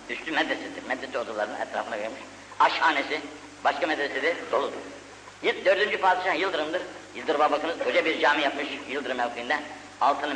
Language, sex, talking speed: Turkish, female, 125 wpm